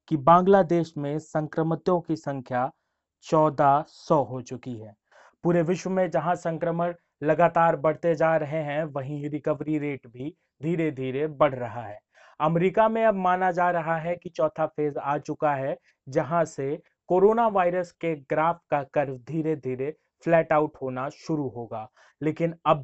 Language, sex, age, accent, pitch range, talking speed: Hindi, male, 30-49, native, 140-170 Hz, 160 wpm